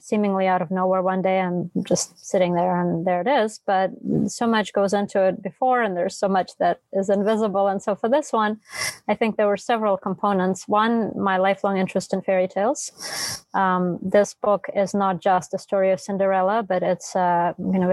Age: 20-39